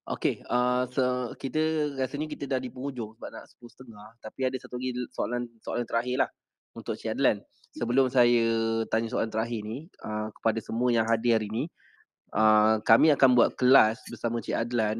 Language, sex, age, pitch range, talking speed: Malay, male, 20-39, 110-125 Hz, 175 wpm